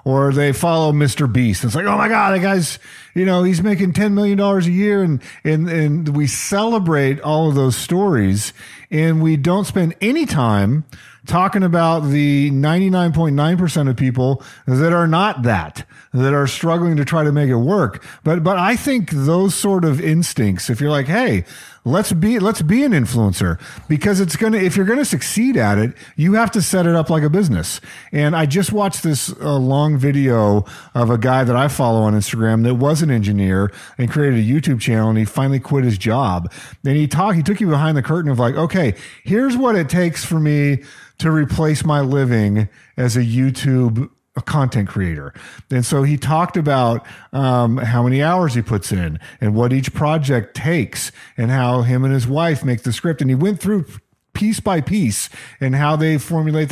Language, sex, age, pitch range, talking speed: English, male, 40-59, 125-170 Hz, 200 wpm